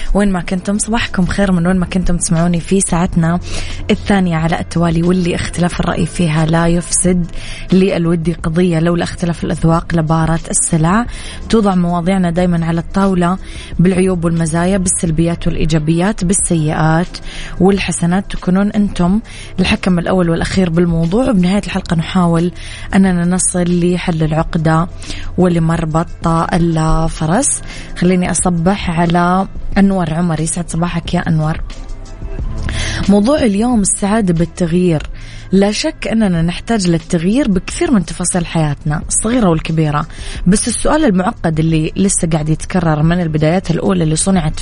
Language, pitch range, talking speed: Arabic, 165-190 Hz, 125 wpm